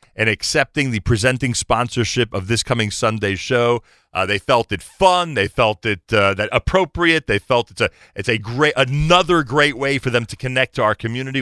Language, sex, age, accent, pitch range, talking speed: English, male, 40-59, American, 95-125 Hz, 200 wpm